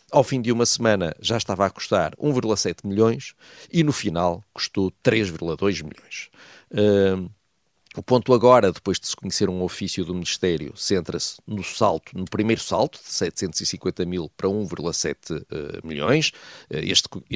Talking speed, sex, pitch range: 150 wpm, male, 95-125 Hz